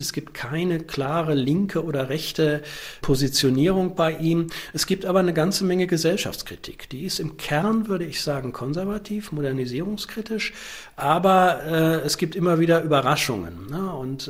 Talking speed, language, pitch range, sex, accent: 145 wpm, German, 125-165 Hz, male, German